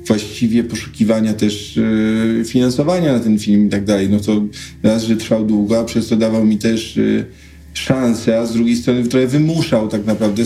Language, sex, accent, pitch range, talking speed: Polish, male, native, 110-130 Hz, 190 wpm